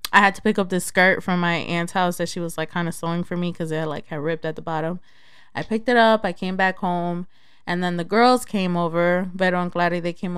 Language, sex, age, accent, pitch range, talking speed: English, female, 20-39, American, 170-195 Hz, 270 wpm